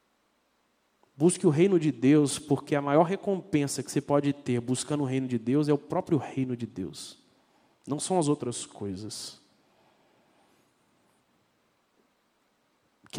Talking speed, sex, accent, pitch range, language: 135 wpm, male, Brazilian, 130-180 Hz, Portuguese